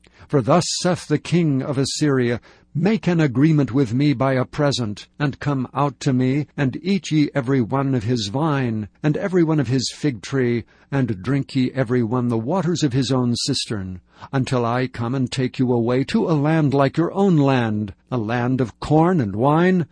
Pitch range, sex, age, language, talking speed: 120-145 Hz, male, 60-79, English, 200 wpm